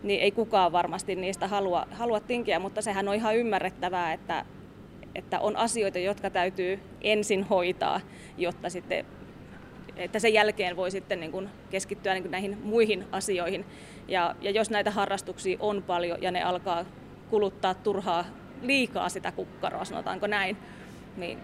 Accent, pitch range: native, 185-215 Hz